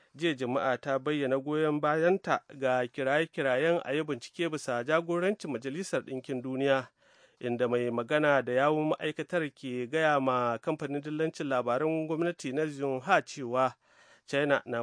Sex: male